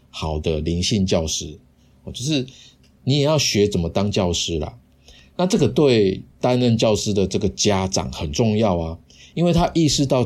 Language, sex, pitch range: Chinese, male, 85-115 Hz